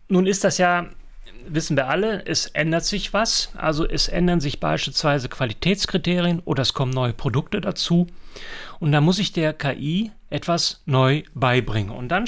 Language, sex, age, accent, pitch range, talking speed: German, male, 40-59, German, 140-180 Hz, 165 wpm